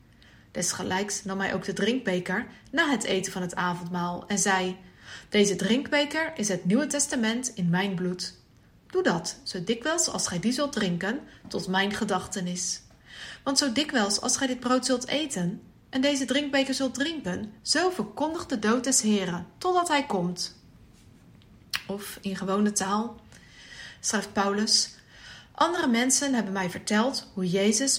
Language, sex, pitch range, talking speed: English, female, 190-270 Hz, 155 wpm